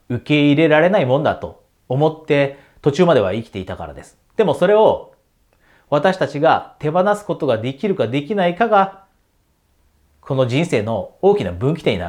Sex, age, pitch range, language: male, 30-49, 120-175 Hz, Japanese